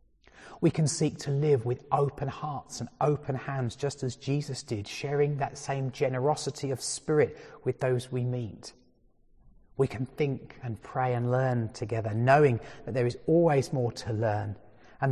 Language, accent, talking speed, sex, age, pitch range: English, British, 165 wpm, male, 30-49, 115-140 Hz